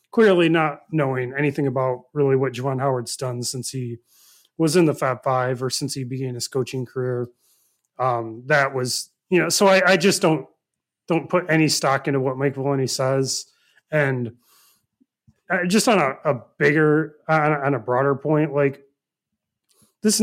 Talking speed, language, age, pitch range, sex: 170 wpm, English, 30-49, 135-170 Hz, male